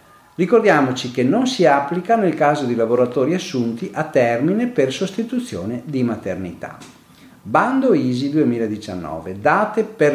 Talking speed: 125 wpm